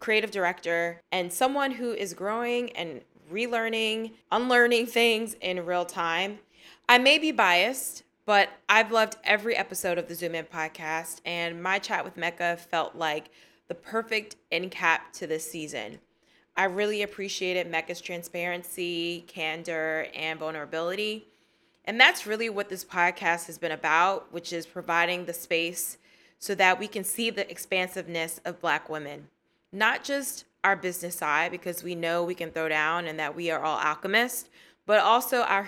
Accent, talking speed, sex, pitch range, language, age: American, 160 wpm, female, 170-200 Hz, English, 20-39